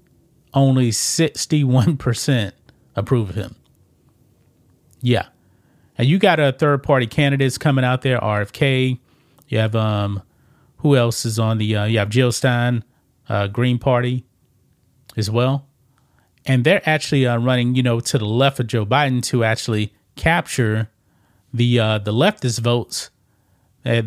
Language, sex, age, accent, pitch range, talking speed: English, male, 30-49, American, 115-140 Hz, 140 wpm